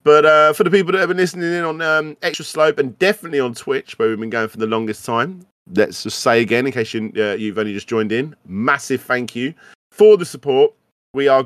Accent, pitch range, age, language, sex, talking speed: British, 110-150 Hz, 30-49, English, male, 245 wpm